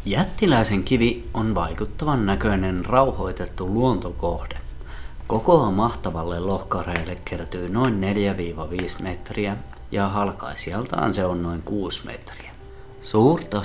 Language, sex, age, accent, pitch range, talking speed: Finnish, male, 30-49, native, 90-115 Hz, 95 wpm